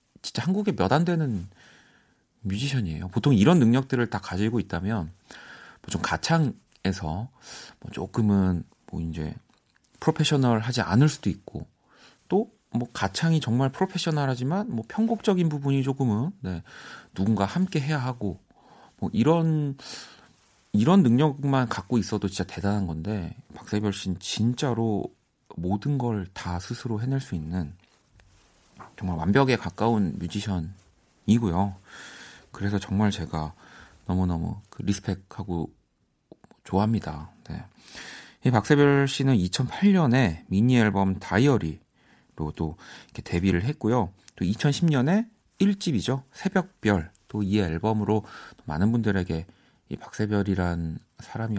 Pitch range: 95-135 Hz